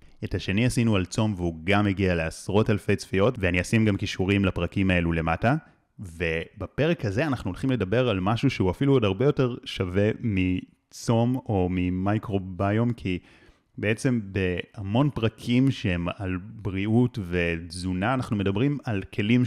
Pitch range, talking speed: 95-135 Hz, 140 wpm